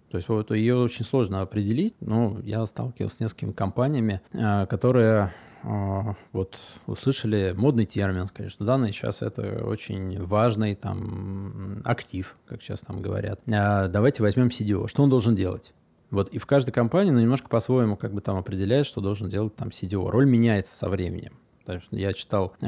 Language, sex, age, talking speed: Russian, male, 20-39, 160 wpm